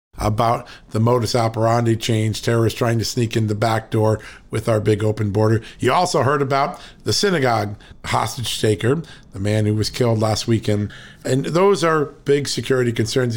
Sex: male